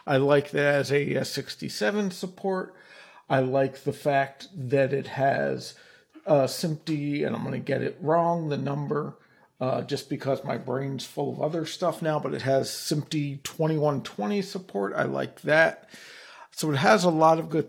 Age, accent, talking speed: 50-69, American, 175 wpm